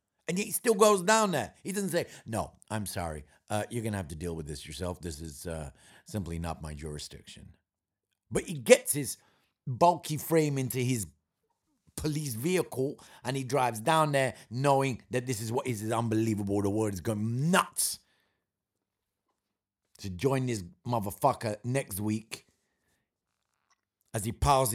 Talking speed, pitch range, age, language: 160 wpm, 100-135 Hz, 50-69, English